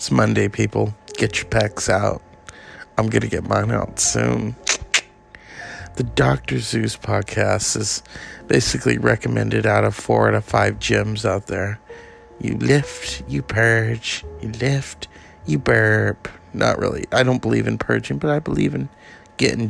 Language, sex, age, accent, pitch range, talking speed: English, male, 50-69, American, 90-120 Hz, 150 wpm